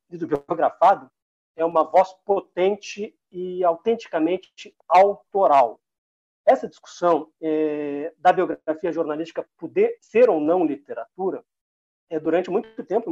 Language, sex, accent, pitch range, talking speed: Portuguese, male, Brazilian, 160-250 Hz, 115 wpm